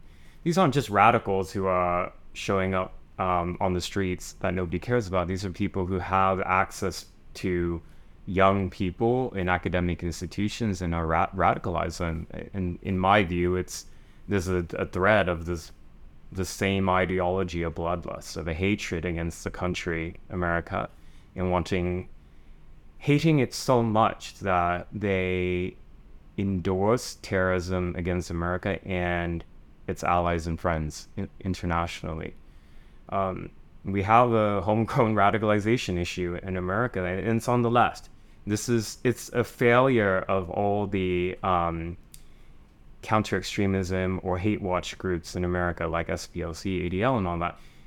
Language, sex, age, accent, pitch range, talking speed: English, male, 20-39, American, 85-100 Hz, 140 wpm